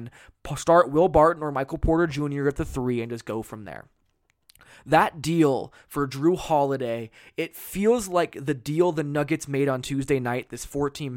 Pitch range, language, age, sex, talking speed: 130-155 Hz, English, 20-39, male, 175 wpm